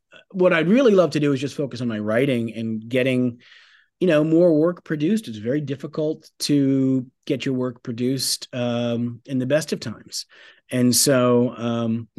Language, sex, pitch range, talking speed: English, male, 115-145 Hz, 175 wpm